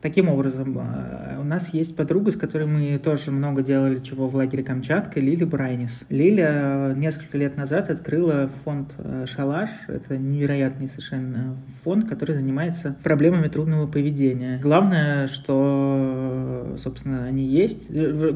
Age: 20-39